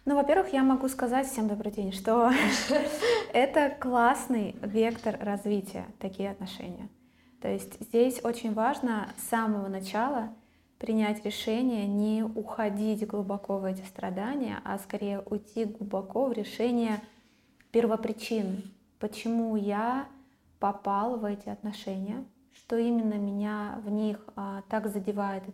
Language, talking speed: Russian, 120 wpm